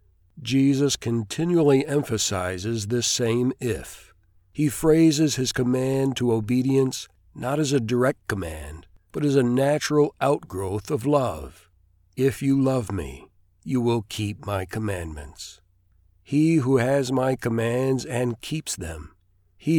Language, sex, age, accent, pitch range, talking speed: English, male, 60-79, American, 95-135 Hz, 125 wpm